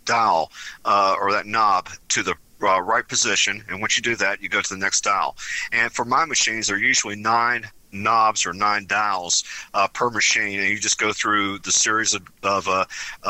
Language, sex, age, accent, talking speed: English, male, 50-69, American, 210 wpm